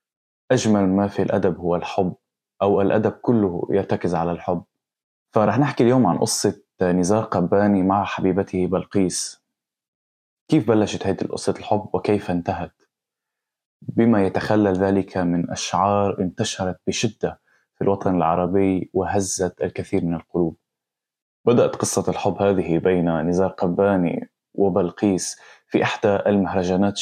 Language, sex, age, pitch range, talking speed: English, male, 20-39, 90-105 Hz, 120 wpm